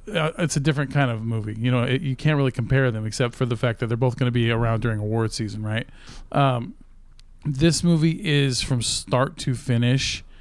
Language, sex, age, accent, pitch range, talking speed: English, male, 40-59, American, 120-150 Hz, 215 wpm